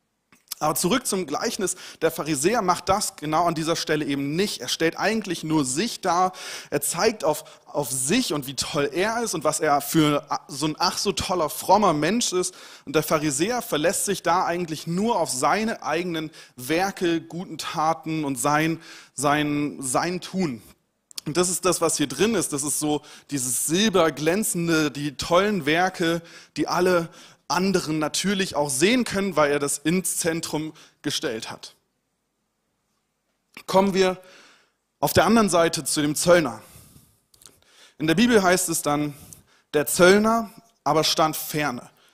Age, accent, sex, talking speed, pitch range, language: 30-49, German, male, 160 wpm, 145-185 Hz, German